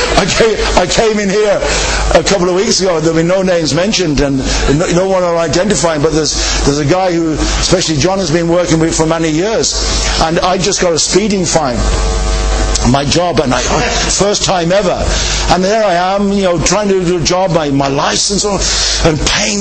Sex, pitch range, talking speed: male, 165-200 Hz, 200 wpm